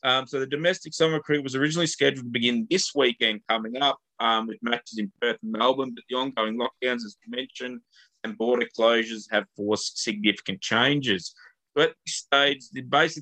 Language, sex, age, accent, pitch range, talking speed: English, male, 20-39, Australian, 115-140 Hz, 170 wpm